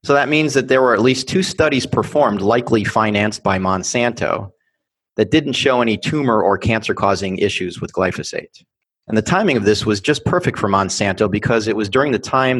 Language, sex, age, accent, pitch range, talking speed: English, male, 30-49, American, 105-135 Hz, 195 wpm